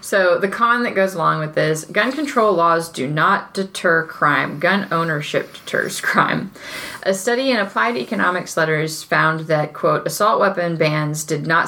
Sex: female